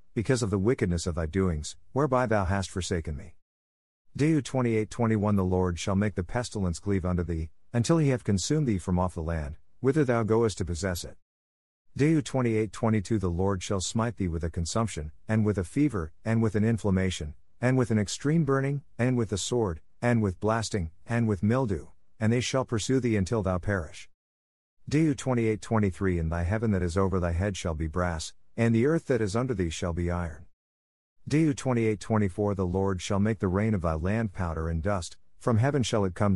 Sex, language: male, English